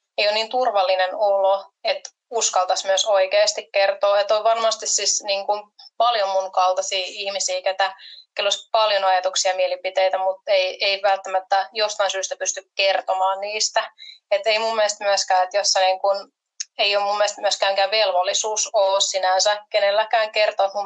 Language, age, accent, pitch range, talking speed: Finnish, 20-39, native, 190-225 Hz, 150 wpm